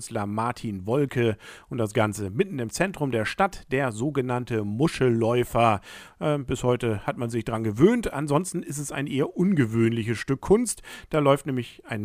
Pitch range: 115-150 Hz